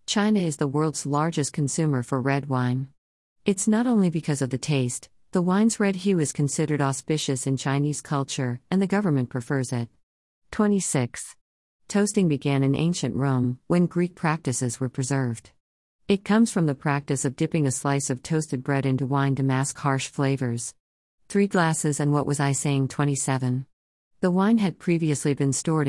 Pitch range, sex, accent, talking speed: 130-165 Hz, female, American, 170 wpm